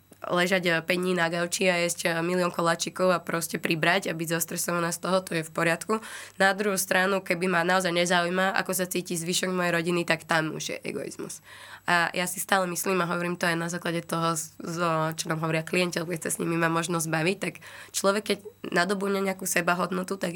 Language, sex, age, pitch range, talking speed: Slovak, female, 20-39, 165-185 Hz, 195 wpm